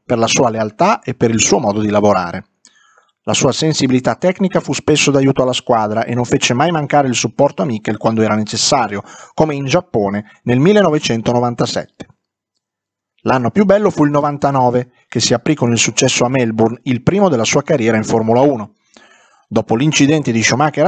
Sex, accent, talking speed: male, native, 180 wpm